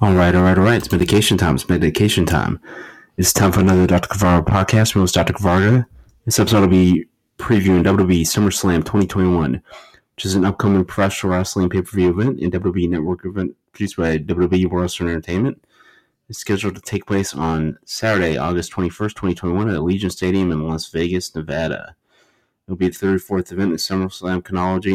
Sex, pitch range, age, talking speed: male, 85-95 Hz, 30-49, 180 wpm